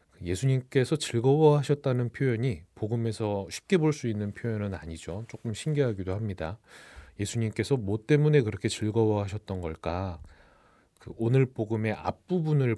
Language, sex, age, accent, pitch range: Korean, male, 30-49, native, 95-120 Hz